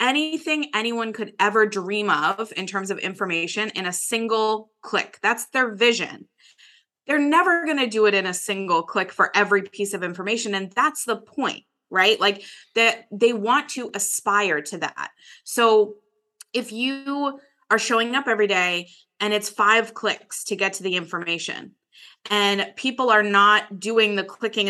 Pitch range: 195-245 Hz